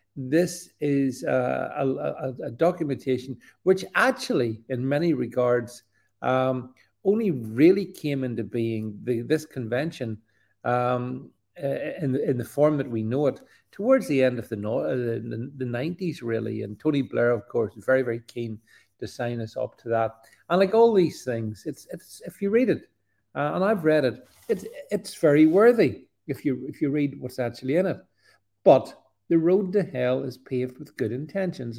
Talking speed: 175 wpm